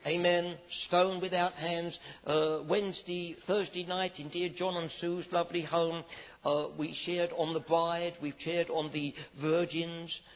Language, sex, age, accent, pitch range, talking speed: English, male, 60-79, British, 150-170 Hz, 155 wpm